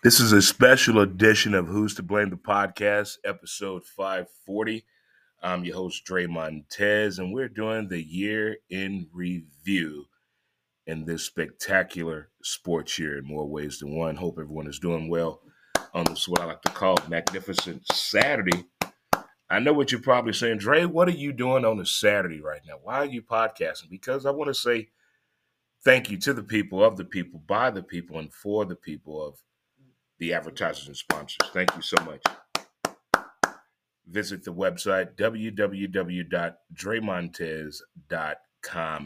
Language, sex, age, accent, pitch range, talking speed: English, male, 30-49, American, 85-110 Hz, 155 wpm